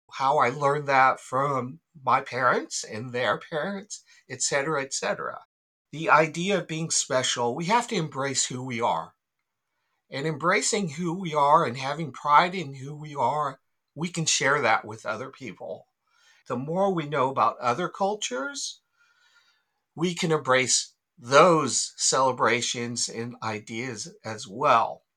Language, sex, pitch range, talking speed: English, male, 130-195 Hz, 140 wpm